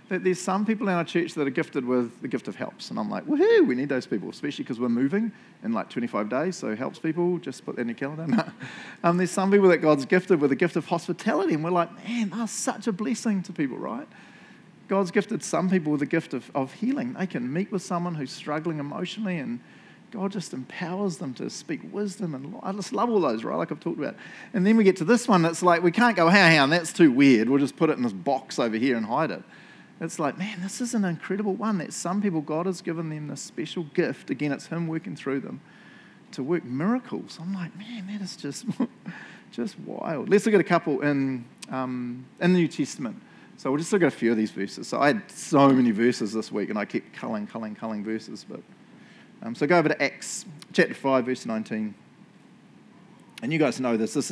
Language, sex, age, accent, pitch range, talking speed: English, male, 40-59, Australian, 140-205 Hz, 240 wpm